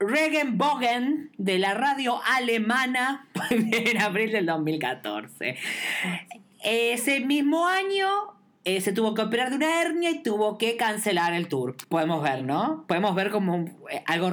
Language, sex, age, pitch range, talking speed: Spanish, female, 20-39, 170-255 Hz, 135 wpm